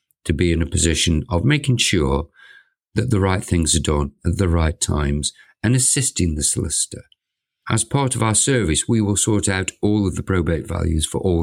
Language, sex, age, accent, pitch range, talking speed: English, male, 50-69, British, 80-105 Hz, 200 wpm